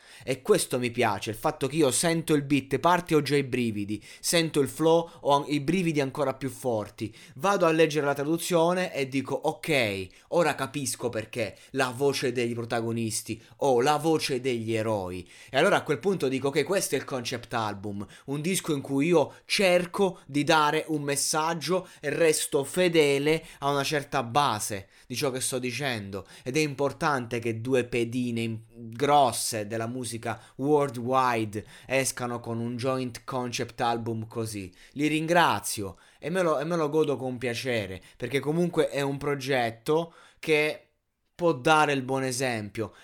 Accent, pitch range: native, 120-150 Hz